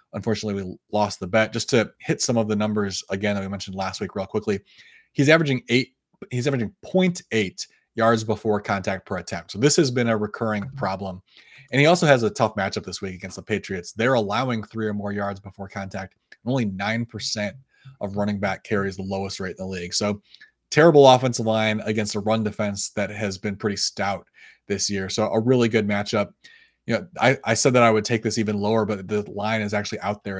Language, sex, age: English, male, 30-49